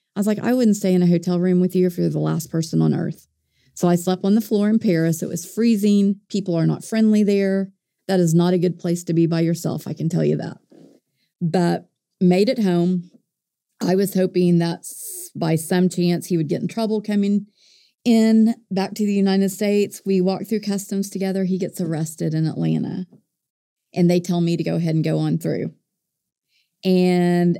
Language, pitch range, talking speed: English, 165-195 Hz, 205 wpm